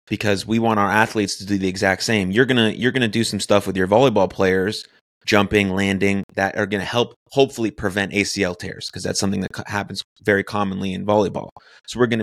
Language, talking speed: English, 220 wpm